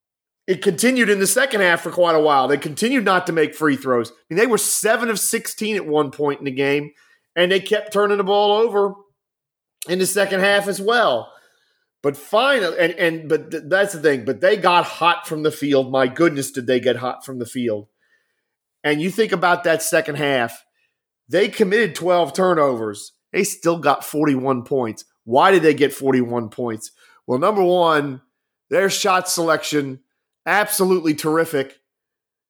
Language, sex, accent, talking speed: English, male, American, 170 wpm